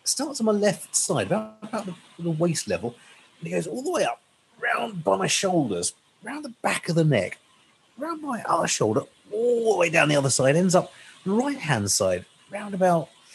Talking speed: 215 wpm